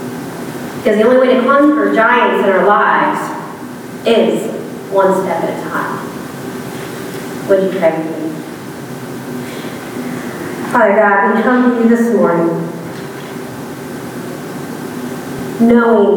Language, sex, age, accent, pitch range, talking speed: English, female, 40-59, American, 200-235 Hz, 110 wpm